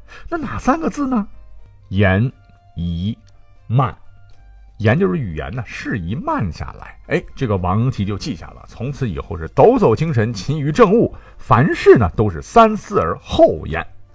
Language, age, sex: Chinese, 50-69, male